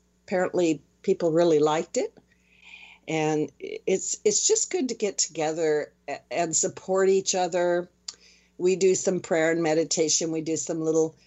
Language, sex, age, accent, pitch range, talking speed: English, female, 50-69, American, 145-185 Hz, 145 wpm